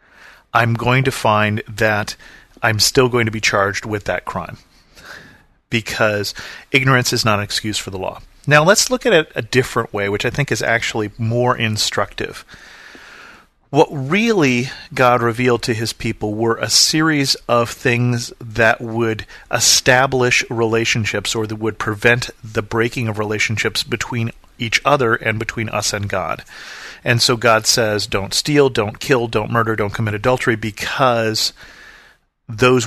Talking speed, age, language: 155 wpm, 40-59, English